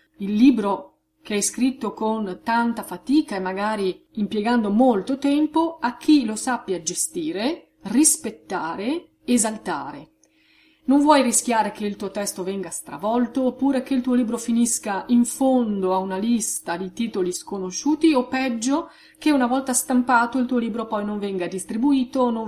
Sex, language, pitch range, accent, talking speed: female, Italian, 195-270 Hz, native, 155 wpm